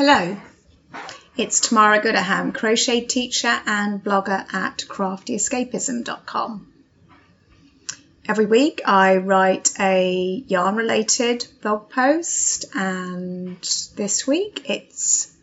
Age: 30-49